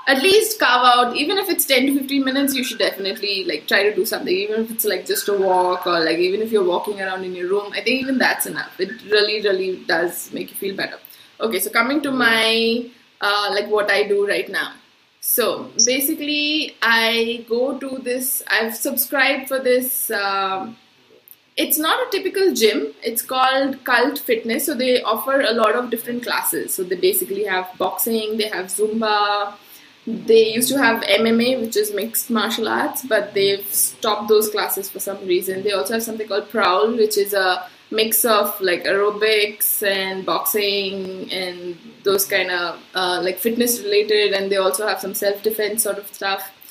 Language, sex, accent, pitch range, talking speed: English, female, Indian, 200-260 Hz, 190 wpm